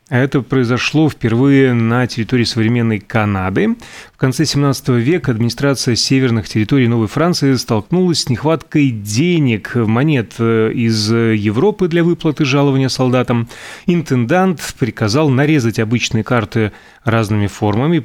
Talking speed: 115 wpm